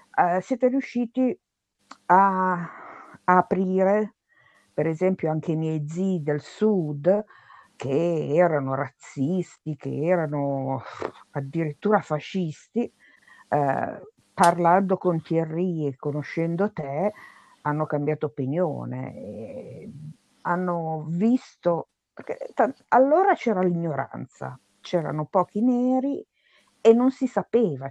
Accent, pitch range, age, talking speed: native, 150-195 Hz, 50-69, 95 wpm